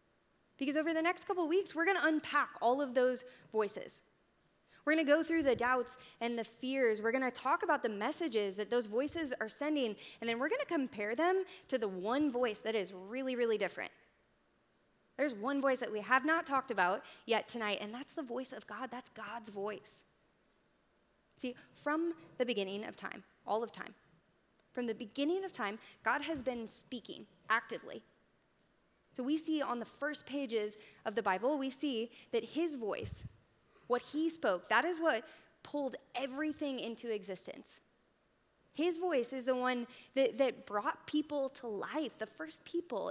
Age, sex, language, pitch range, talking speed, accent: 20-39, female, English, 220-295 Hz, 180 wpm, American